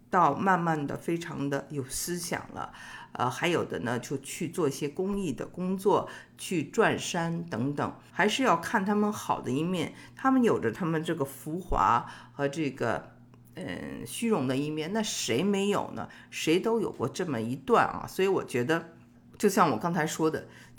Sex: female